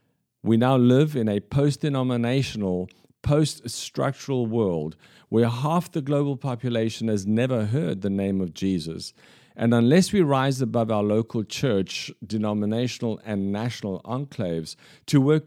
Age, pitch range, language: 50-69, 100-130 Hz, English